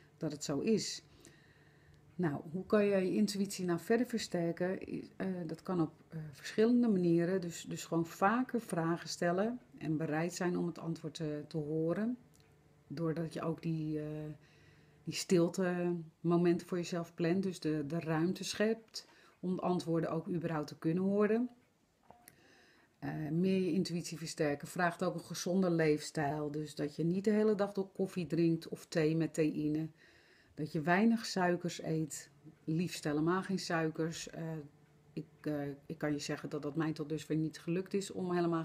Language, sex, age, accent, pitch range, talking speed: Dutch, female, 40-59, Dutch, 155-180 Hz, 165 wpm